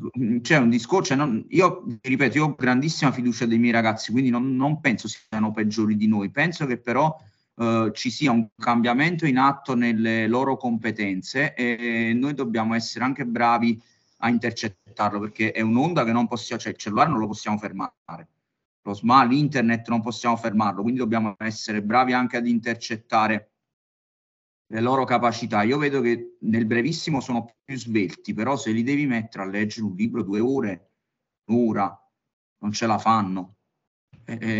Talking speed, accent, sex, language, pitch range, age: 170 wpm, native, male, Italian, 110-130 Hz, 30-49